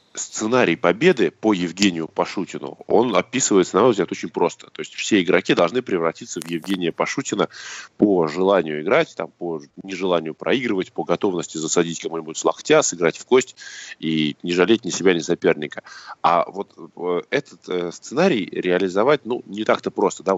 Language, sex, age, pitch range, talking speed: Russian, male, 20-39, 80-105 Hz, 155 wpm